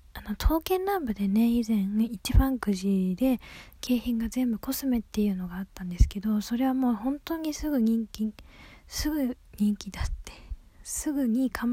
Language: Japanese